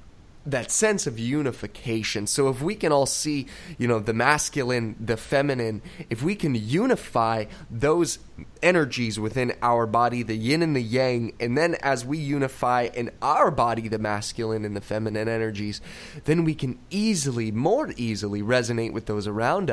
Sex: male